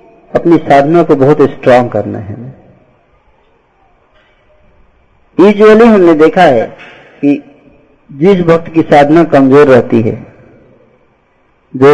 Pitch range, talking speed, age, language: 125-165 Hz, 100 wpm, 50-69, Hindi